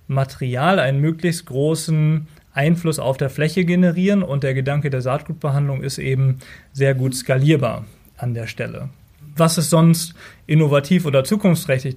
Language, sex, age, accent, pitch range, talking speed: German, male, 30-49, German, 135-160 Hz, 140 wpm